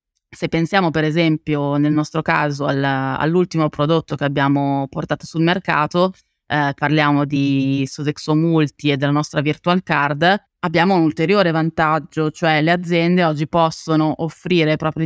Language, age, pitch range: Italian, 20-39, 145-165 Hz